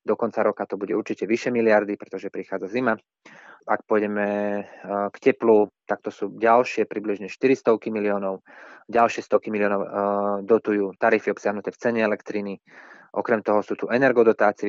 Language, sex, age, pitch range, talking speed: Slovak, male, 20-39, 105-115 Hz, 145 wpm